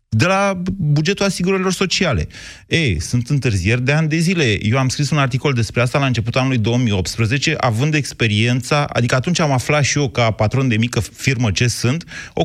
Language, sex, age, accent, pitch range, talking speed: Romanian, male, 30-49, native, 120-170 Hz, 190 wpm